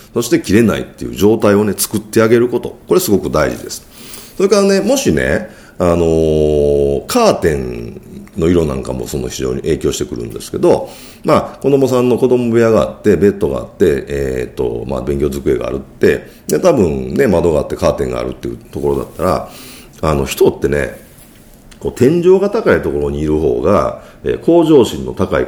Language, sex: Japanese, male